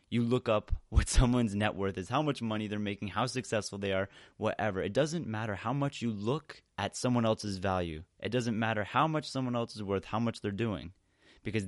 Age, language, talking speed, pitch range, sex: 20-39, English, 220 wpm, 100-130 Hz, male